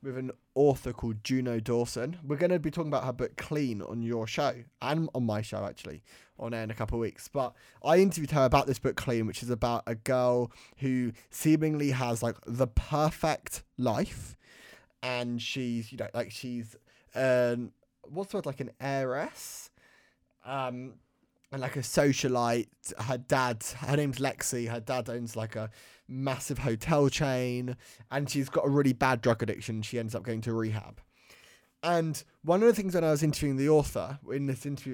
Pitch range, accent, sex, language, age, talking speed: 120-150 Hz, British, male, English, 20-39, 185 wpm